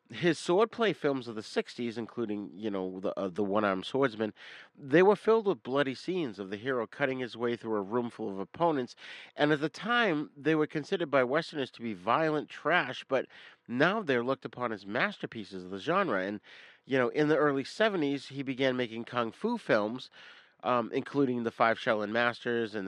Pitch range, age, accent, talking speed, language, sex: 110-145 Hz, 40-59, American, 195 wpm, English, male